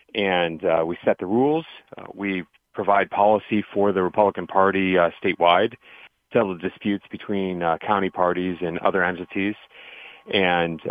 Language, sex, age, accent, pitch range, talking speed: English, male, 40-59, American, 85-105 Hz, 145 wpm